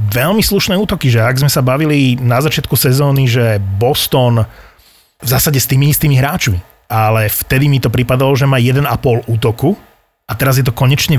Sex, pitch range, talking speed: male, 115-145 Hz, 180 wpm